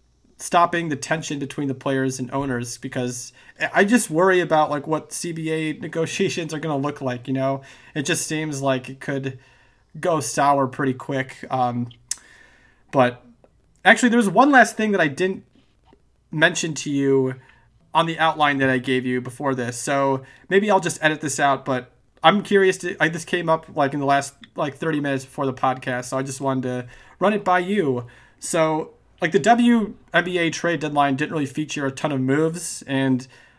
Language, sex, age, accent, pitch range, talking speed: English, male, 30-49, American, 130-170 Hz, 185 wpm